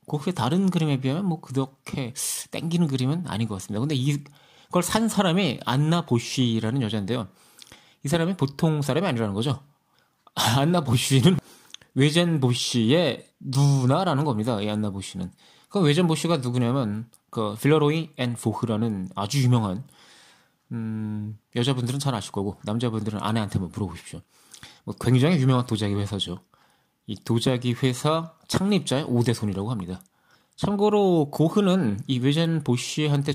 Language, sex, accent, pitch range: Korean, male, native, 110-150 Hz